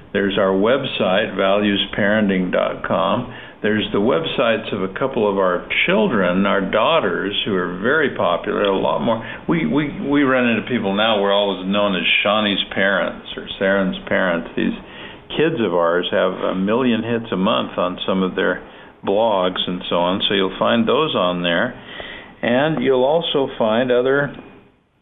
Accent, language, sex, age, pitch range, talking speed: American, English, male, 50-69, 100-125 Hz, 165 wpm